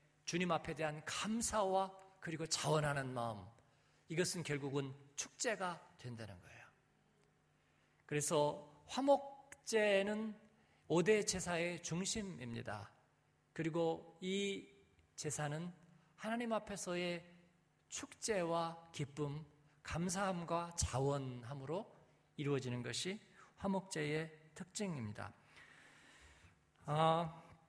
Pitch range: 145-195 Hz